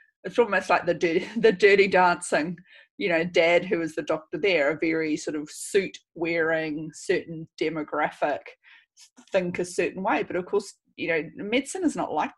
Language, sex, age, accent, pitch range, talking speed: English, female, 30-49, Australian, 175-245 Hz, 180 wpm